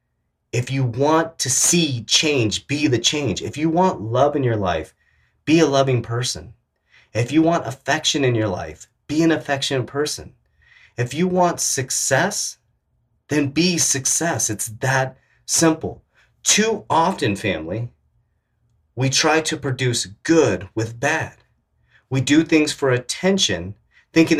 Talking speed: 140 wpm